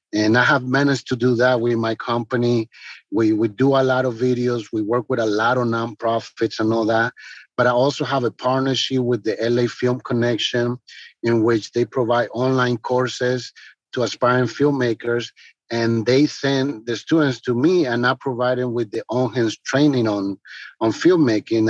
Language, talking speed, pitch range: English, 185 wpm, 115-130 Hz